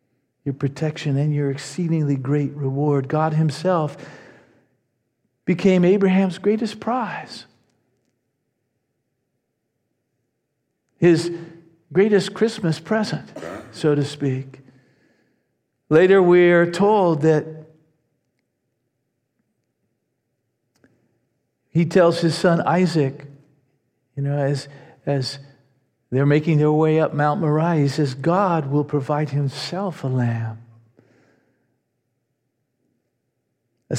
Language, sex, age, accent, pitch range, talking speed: English, male, 50-69, American, 135-170 Hz, 90 wpm